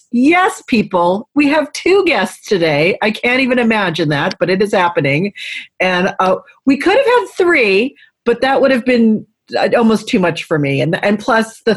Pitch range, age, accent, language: 180-265 Hz, 40-59, American, English